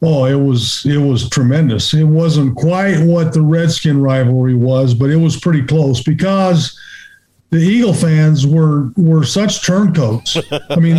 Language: English